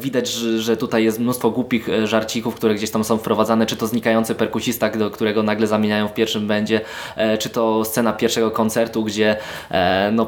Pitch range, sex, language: 105-120 Hz, male, Polish